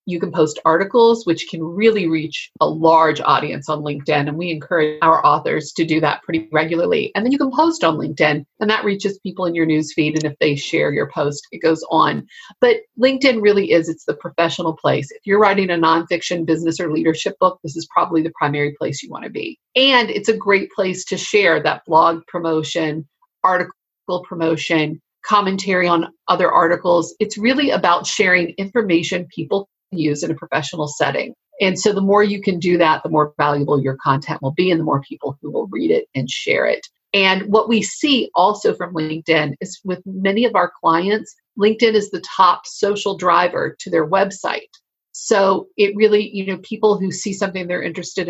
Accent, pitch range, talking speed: American, 160-205 Hz, 200 wpm